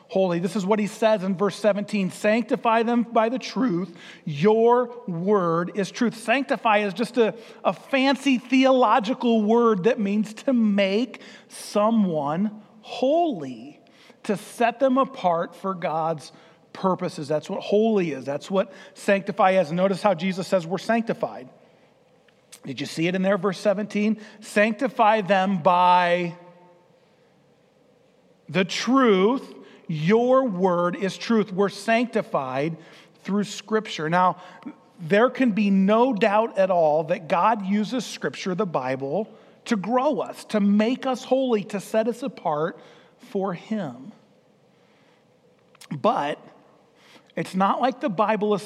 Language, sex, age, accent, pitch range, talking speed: English, male, 40-59, American, 185-230 Hz, 135 wpm